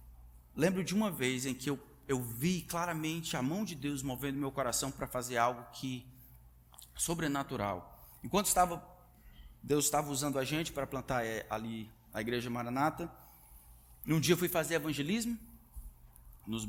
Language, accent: Portuguese, Brazilian